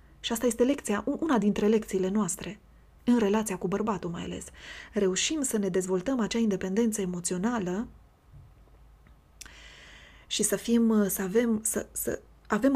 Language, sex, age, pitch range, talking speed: Romanian, female, 20-39, 190-225 Hz, 135 wpm